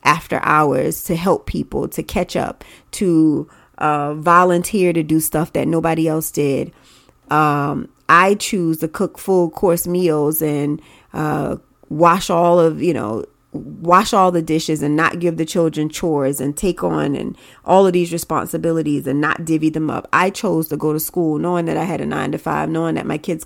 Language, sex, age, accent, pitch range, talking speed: English, female, 30-49, American, 155-180 Hz, 190 wpm